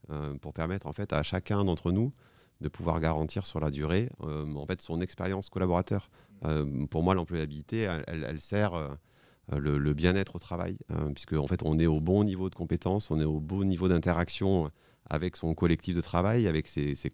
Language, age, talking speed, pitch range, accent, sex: French, 40-59, 205 wpm, 80-95 Hz, French, male